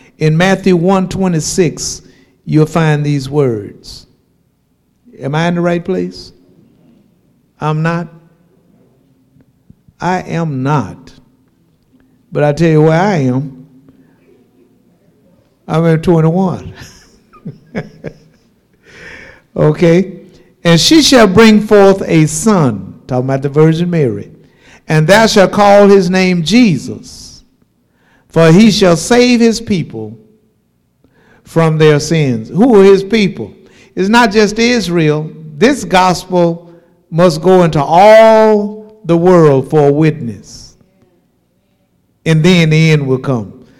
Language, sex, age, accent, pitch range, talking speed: English, male, 60-79, American, 145-190 Hz, 115 wpm